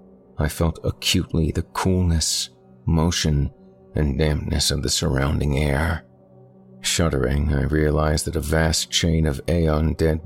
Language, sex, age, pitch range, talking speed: English, male, 50-69, 70-85 Hz, 125 wpm